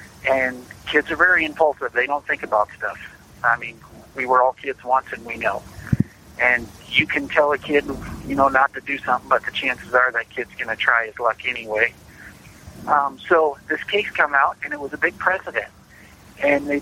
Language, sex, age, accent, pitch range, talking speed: English, male, 50-69, American, 125-150 Hz, 205 wpm